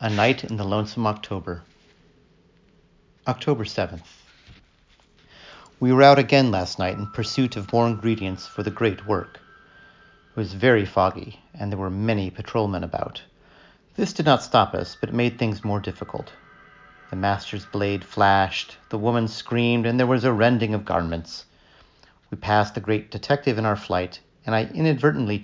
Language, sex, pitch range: English, male, 95-125 Hz